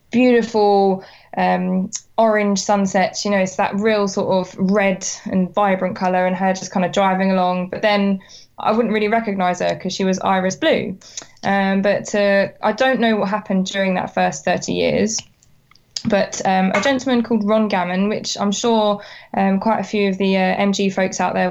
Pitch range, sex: 190-220 Hz, female